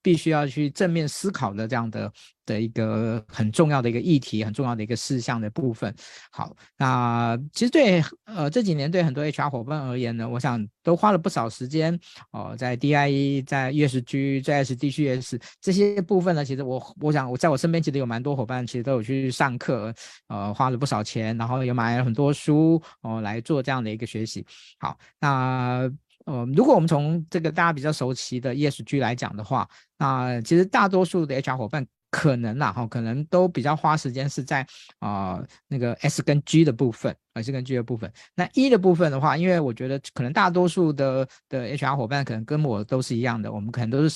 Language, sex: Chinese, male